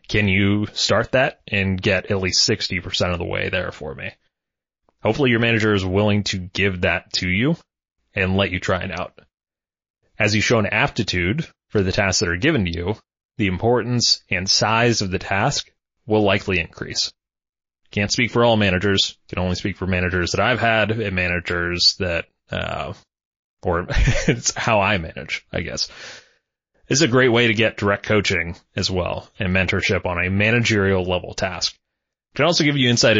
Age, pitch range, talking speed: 30-49, 95-115 Hz, 185 wpm